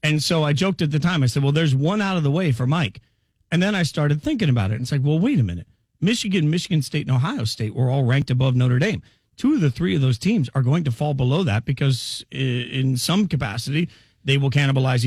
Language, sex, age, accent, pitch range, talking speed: English, male, 40-59, American, 130-180 Hz, 250 wpm